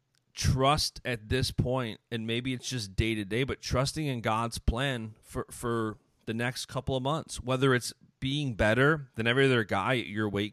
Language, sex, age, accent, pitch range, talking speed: English, male, 30-49, American, 120-155 Hz, 195 wpm